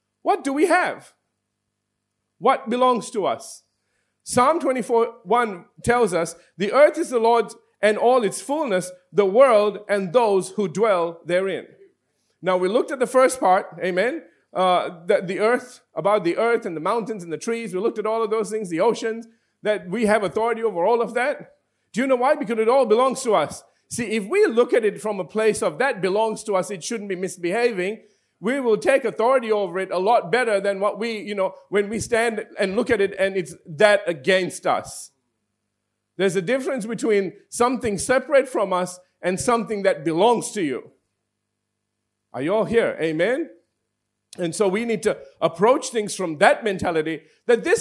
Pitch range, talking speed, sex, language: 185-250 Hz, 190 wpm, male, English